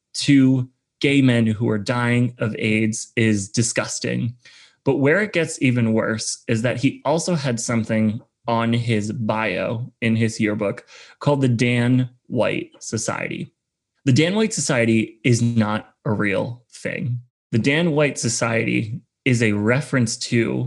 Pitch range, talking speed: 115-145 Hz, 145 wpm